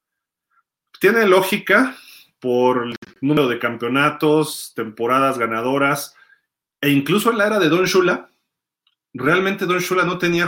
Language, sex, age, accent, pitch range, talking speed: Spanish, male, 30-49, Mexican, 130-180 Hz, 125 wpm